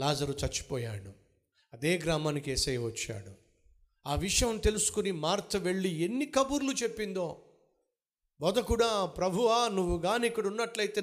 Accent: native